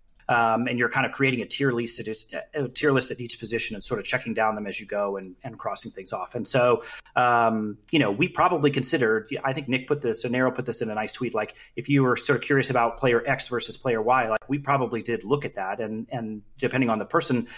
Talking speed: 260 wpm